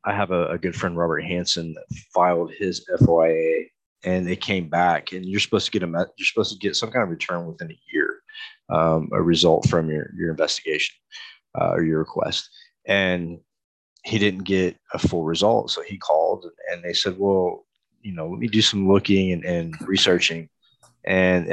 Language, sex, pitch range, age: English, male, 85-115 Hz, 30-49